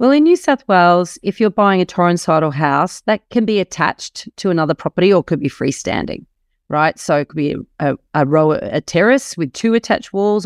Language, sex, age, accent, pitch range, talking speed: English, female, 40-59, Australian, 160-220 Hz, 220 wpm